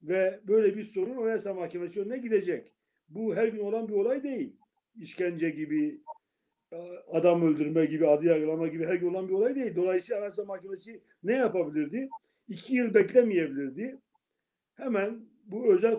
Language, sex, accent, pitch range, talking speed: Turkish, male, native, 180-255 Hz, 145 wpm